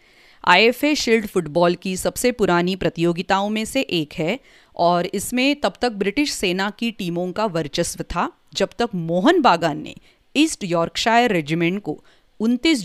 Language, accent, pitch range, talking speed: English, Indian, 170-235 Hz, 150 wpm